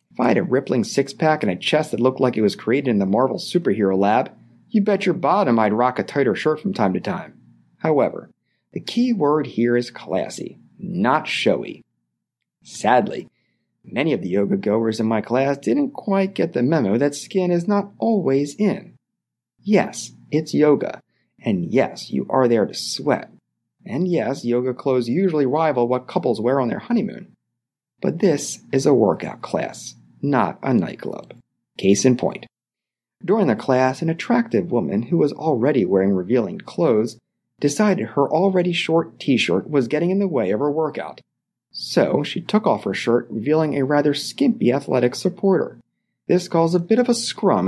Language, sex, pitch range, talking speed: English, male, 120-185 Hz, 175 wpm